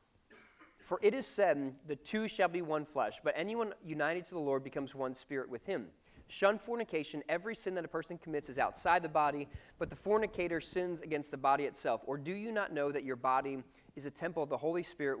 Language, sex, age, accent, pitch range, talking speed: English, male, 40-59, American, 135-175 Hz, 220 wpm